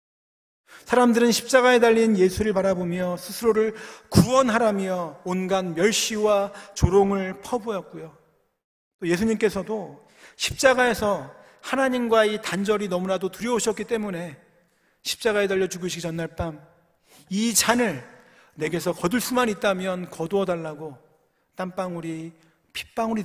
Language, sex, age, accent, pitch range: Korean, male, 40-59, native, 165-220 Hz